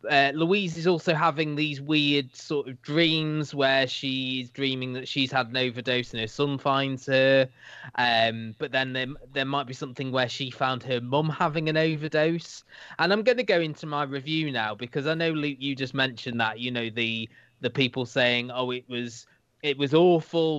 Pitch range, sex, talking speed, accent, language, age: 125-155 Hz, male, 200 wpm, British, English, 20-39